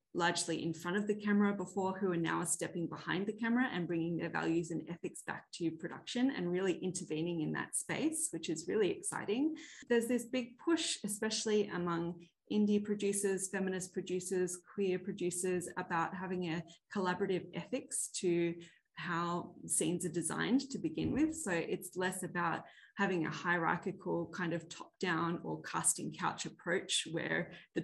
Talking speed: 160 wpm